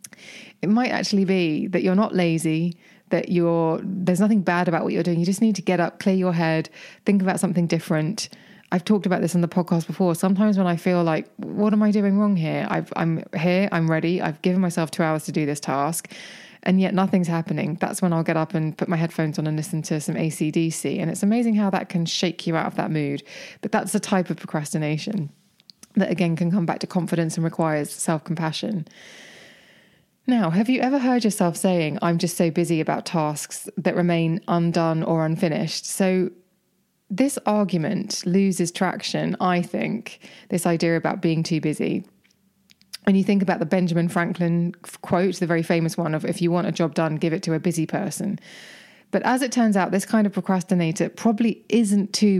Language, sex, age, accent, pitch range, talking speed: English, female, 20-39, British, 165-195 Hz, 205 wpm